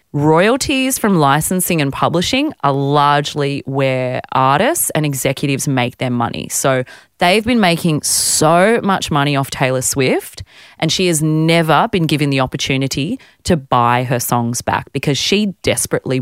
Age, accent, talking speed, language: 30-49, Australian, 150 wpm, English